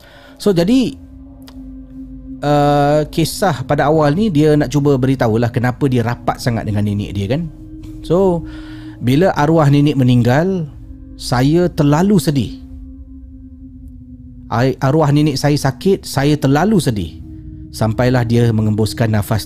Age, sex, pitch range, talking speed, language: 40-59, male, 105-145 Hz, 120 wpm, Malay